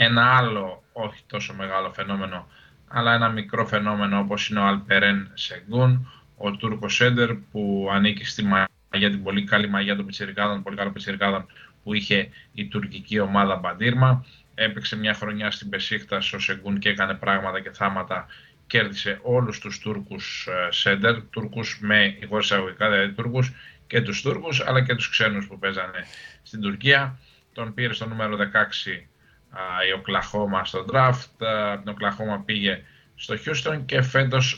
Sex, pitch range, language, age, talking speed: male, 100-125 Hz, Greek, 20-39, 150 wpm